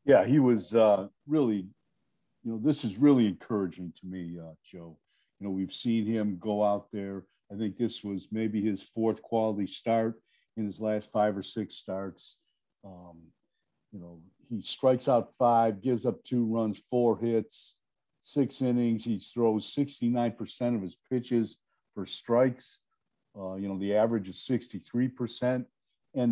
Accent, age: American, 50-69